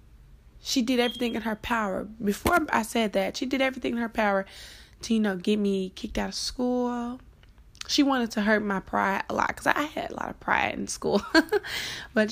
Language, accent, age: English, American, 20-39